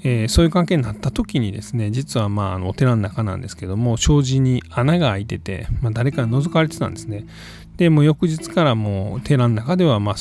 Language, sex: Japanese, male